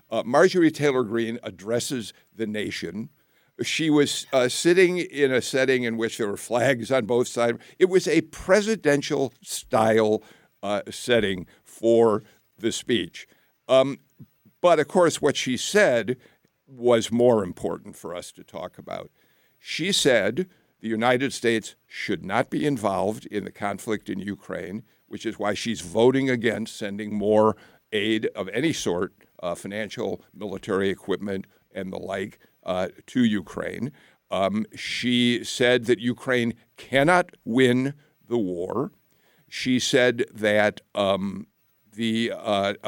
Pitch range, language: 110-140 Hz, English